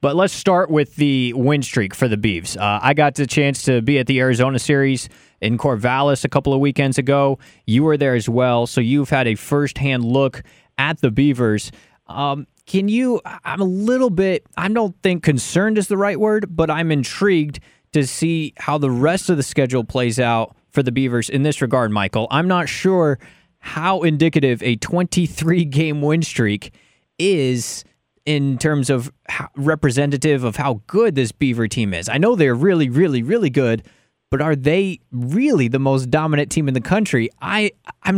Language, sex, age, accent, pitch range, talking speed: English, male, 20-39, American, 130-180 Hz, 185 wpm